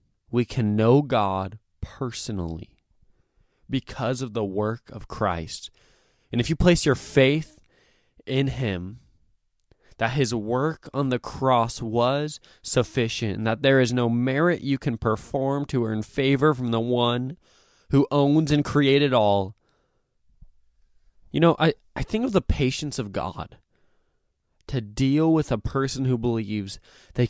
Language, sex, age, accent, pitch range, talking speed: English, male, 20-39, American, 110-150 Hz, 145 wpm